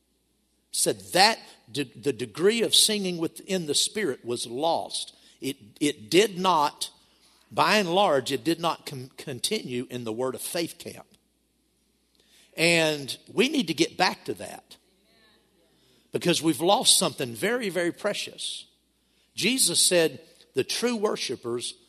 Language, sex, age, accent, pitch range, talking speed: English, male, 50-69, American, 130-180 Hz, 130 wpm